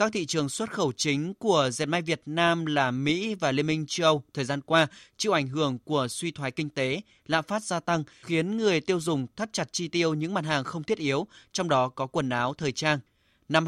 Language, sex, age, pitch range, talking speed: Vietnamese, male, 20-39, 145-175 Hz, 240 wpm